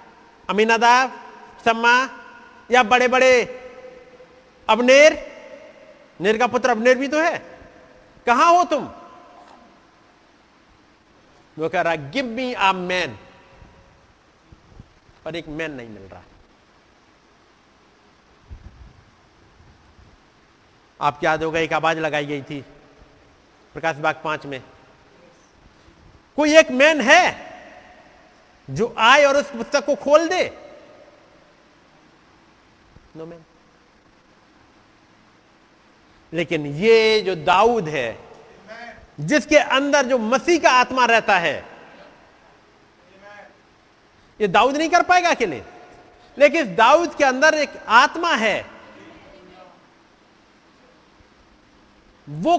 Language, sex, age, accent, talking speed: Hindi, male, 50-69, native, 90 wpm